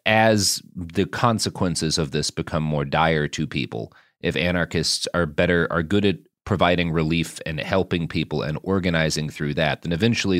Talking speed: 160 wpm